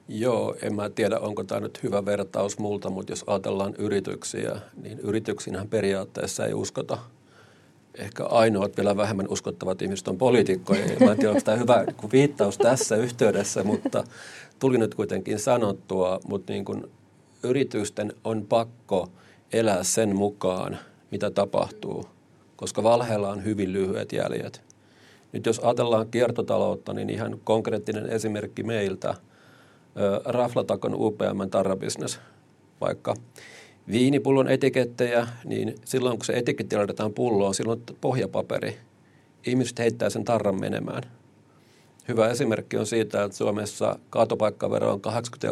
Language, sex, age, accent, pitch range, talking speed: Finnish, male, 40-59, native, 100-120 Hz, 130 wpm